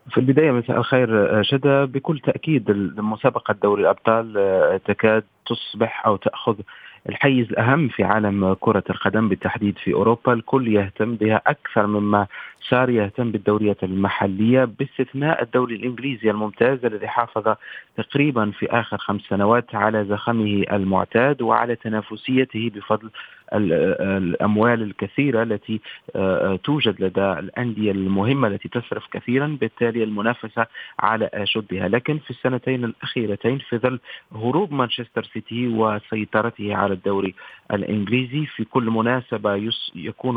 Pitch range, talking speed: 105-125 Hz, 120 wpm